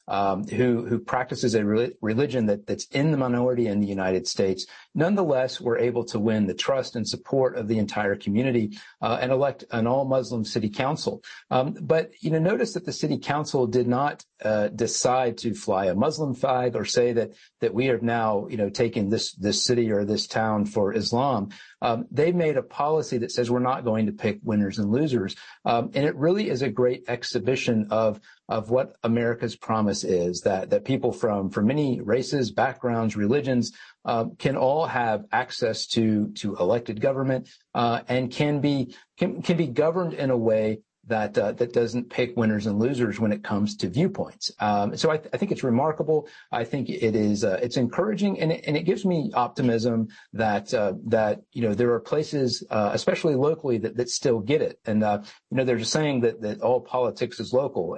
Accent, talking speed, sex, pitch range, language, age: American, 200 wpm, male, 110-130 Hz, English, 50-69